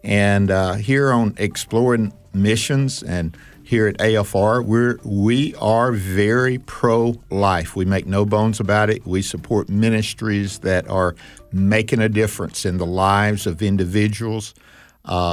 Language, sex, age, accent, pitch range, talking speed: English, male, 50-69, American, 100-115 Hz, 135 wpm